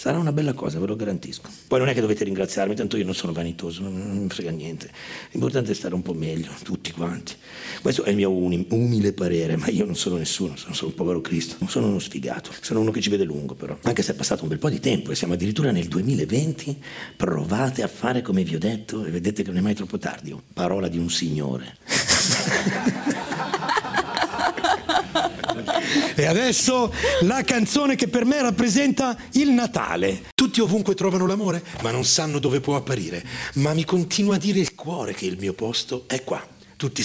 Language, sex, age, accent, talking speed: Italian, male, 50-69, native, 200 wpm